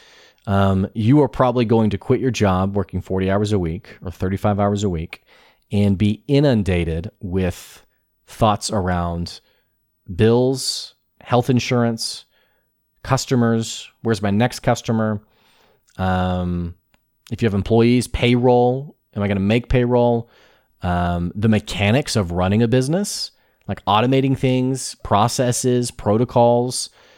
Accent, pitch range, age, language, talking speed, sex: American, 95-120 Hz, 30-49, English, 125 wpm, male